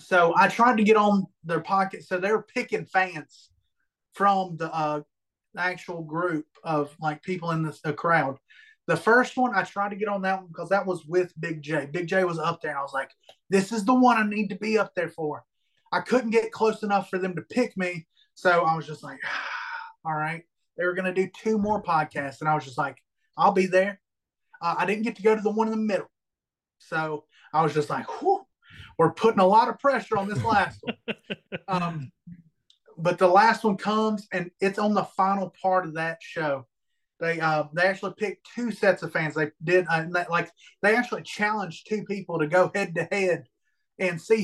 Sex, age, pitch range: male, 20-39, 165-210 Hz